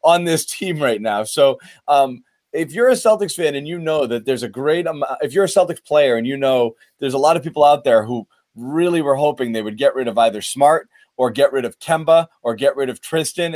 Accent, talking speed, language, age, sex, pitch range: American, 250 wpm, English, 30-49, male, 130-175 Hz